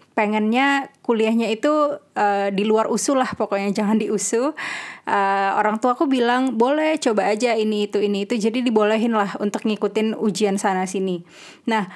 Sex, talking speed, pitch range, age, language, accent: female, 165 wpm, 205-255 Hz, 20-39, Indonesian, native